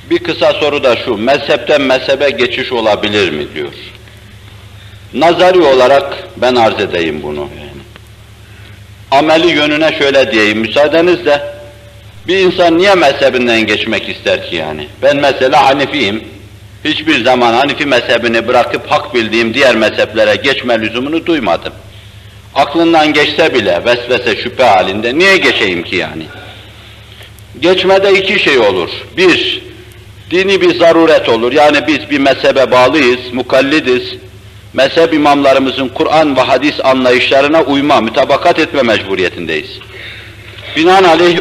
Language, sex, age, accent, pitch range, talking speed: Turkish, male, 60-79, native, 110-170 Hz, 120 wpm